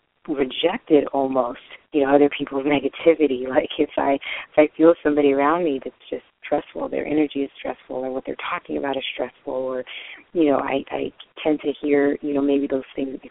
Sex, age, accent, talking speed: female, 30-49, American, 205 wpm